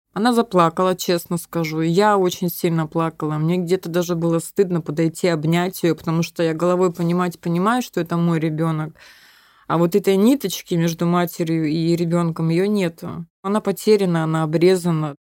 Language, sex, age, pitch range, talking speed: Russian, female, 20-39, 165-190 Hz, 160 wpm